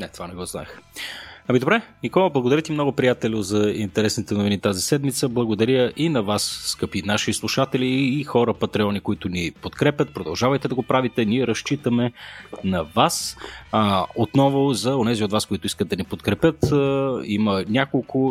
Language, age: Bulgarian, 30-49